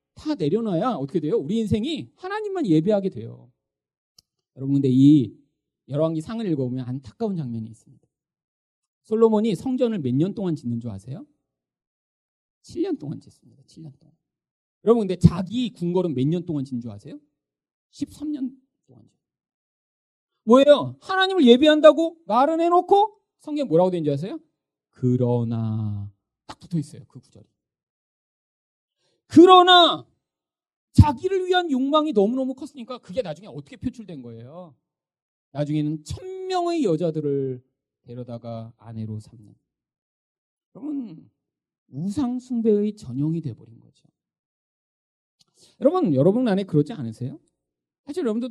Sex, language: male, Korean